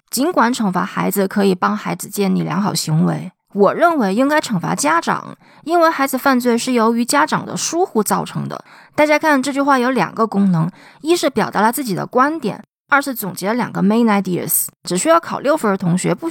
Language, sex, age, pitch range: Chinese, female, 20-39, 180-255 Hz